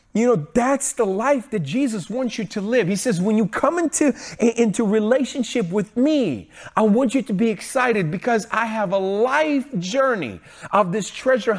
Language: English